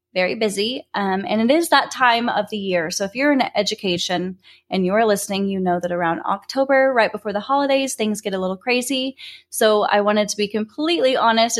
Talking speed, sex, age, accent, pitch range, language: 205 wpm, female, 10-29, American, 190-250 Hz, English